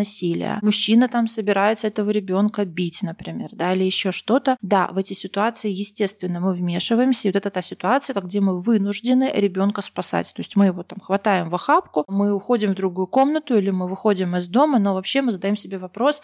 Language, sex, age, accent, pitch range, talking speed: Russian, female, 20-39, native, 190-220 Hz, 195 wpm